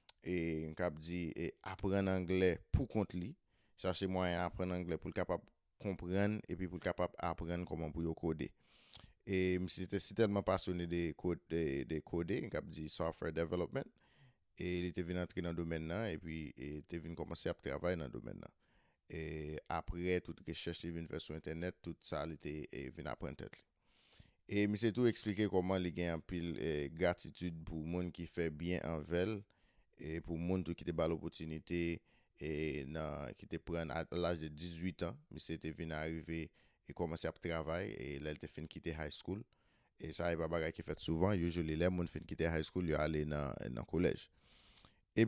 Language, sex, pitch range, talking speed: English, male, 80-90 Hz, 195 wpm